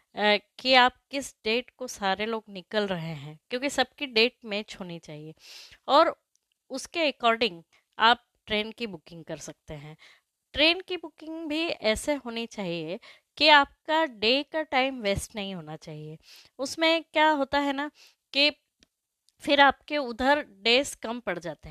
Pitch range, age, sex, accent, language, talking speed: 215-290 Hz, 20-39, female, native, Hindi, 150 wpm